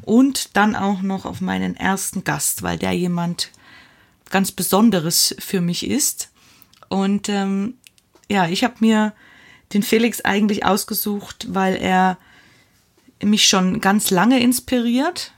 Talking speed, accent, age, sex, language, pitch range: 130 wpm, German, 20-39, female, German, 185-225 Hz